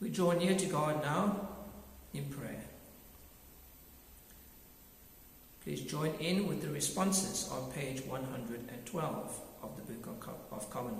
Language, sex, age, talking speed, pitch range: English, male, 60-79, 120 wpm, 145-190 Hz